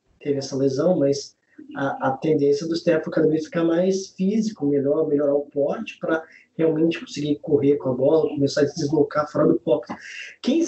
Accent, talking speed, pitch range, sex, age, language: Brazilian, 180 wpm, 160-205 Hz, male, 20-39, Portuguese